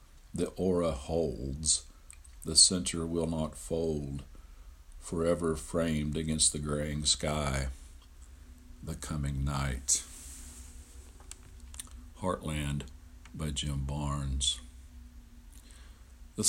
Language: English